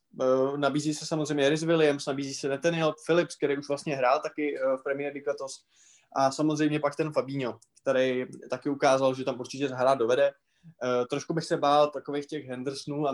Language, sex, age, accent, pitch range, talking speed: Czech, male, 20-39, native, 135-160 Hz, 185 wpm